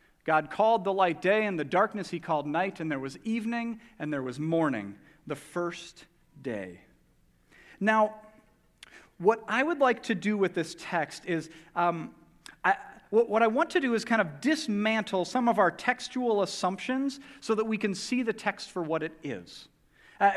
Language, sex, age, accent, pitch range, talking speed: English, male, 40-59, American, 185-235 Hz, 175 wpm